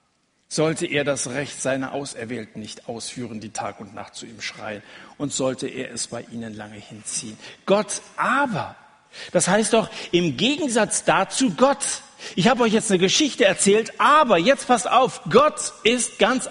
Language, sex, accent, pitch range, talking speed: German, male, German, 145-225 Hz, 165 wpm